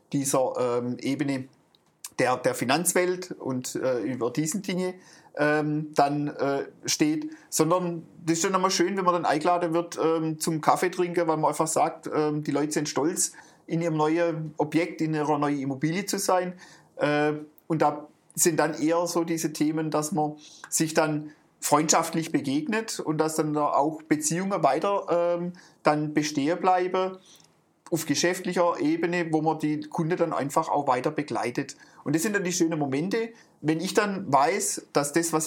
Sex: male